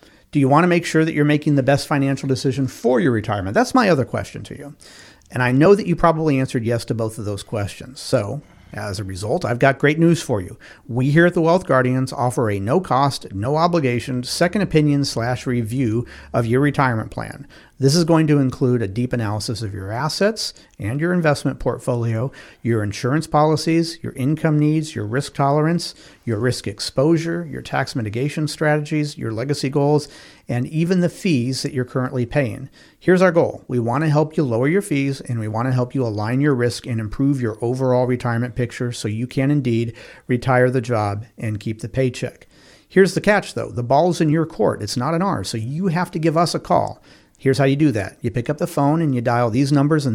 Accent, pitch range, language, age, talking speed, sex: American, 120-150 Hz, English, 50-69, 210 wpm, male